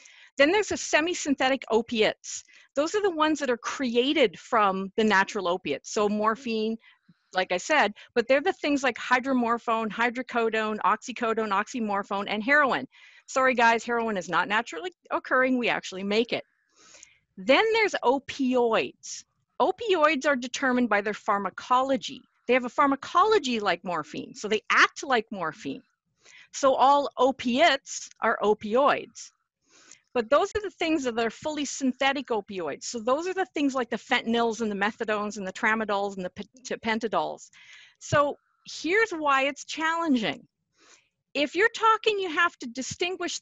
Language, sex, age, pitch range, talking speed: English, female, 40-59, 225-310 Hz, 150 wpm